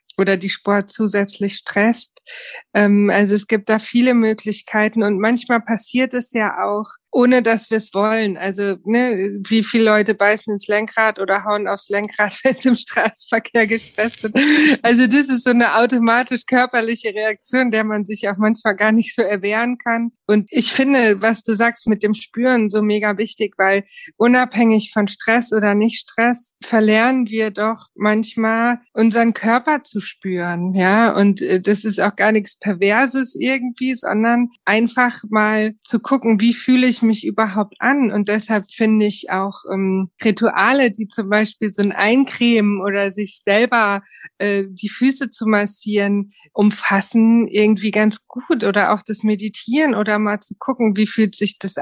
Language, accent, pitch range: German, German, 205-235 Hz